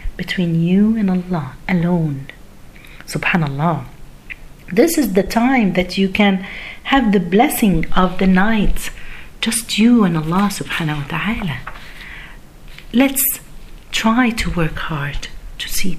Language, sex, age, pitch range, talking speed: Arabic, female, 50-69, 160-220 Hz, 125 wpm